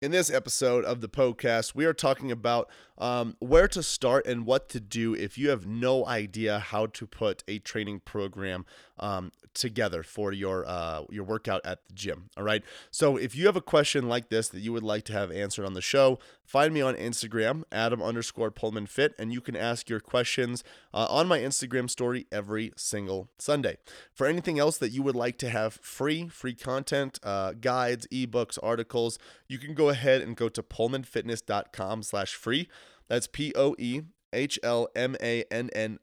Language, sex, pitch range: English, male, 110-130 Hz